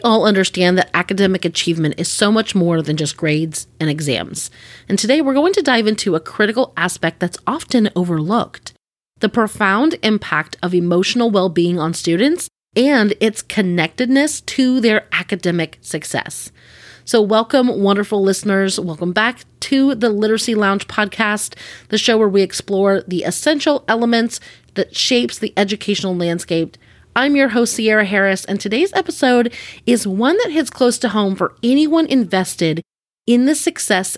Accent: American